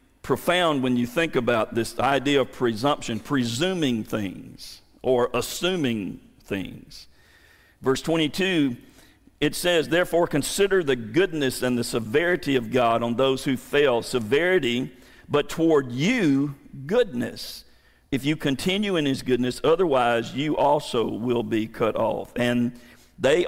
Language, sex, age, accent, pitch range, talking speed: English, male, 50-69, American, 120-155 Hz, 135 wpm